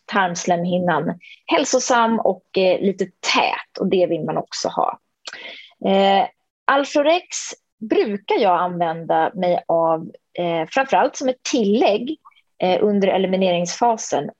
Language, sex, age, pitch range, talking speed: Swedish, female, 20-39, 175-230 Hz, 115 wpm